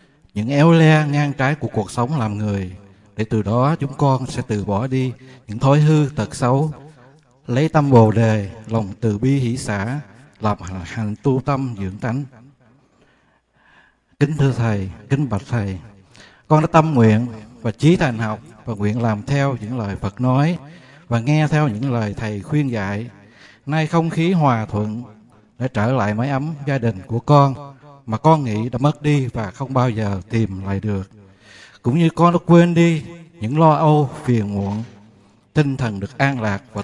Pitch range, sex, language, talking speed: 110-145 Hz, male, Vietnamese, 185 wpm